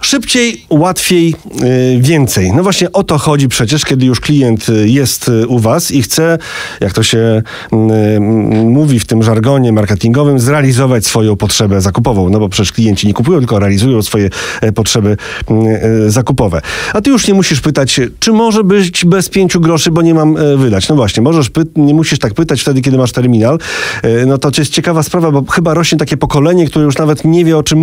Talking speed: 180 wpm